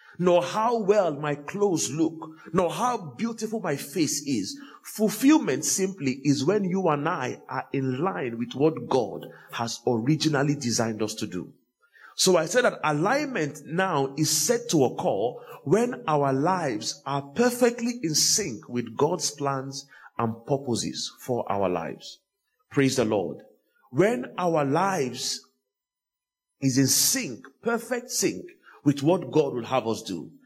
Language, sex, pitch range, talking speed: English, male, 125-190 Hz, 145 wpm